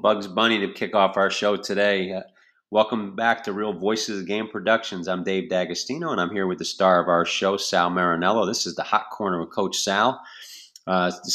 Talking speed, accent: 210 wpm, American